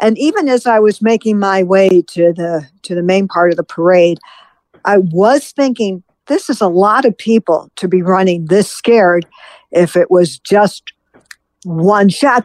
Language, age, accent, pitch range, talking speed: English, 50-69, American, 185-235 Hz, 180 wpm